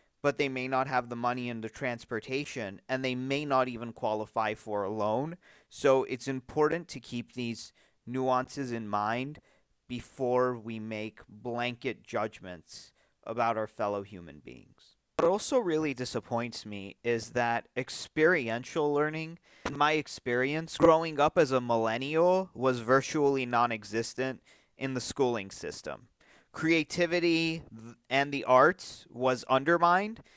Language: English